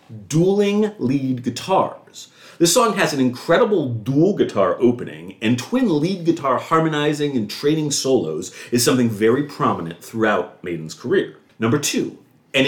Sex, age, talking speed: male, 40-59, 135 wpm